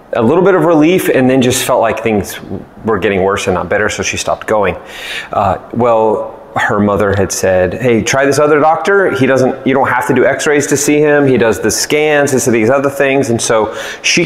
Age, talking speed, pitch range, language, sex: 30-49, 230 wpm, 105-140 Hz, English, male